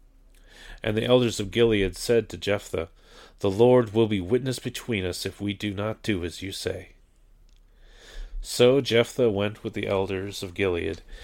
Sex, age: male, 30-49